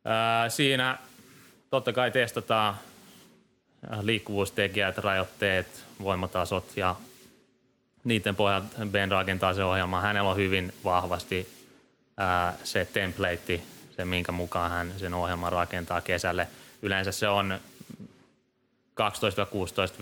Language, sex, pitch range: Finnish, male, 90-100 Hz